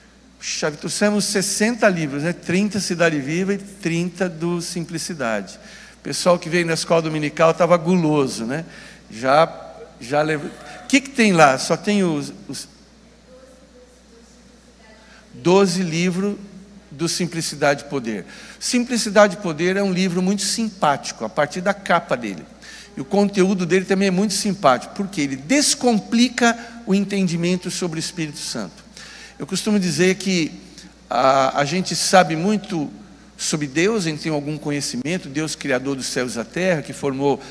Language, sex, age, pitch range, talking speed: Portuguese, male, 60-79, 150-205 Hz, 145 wpm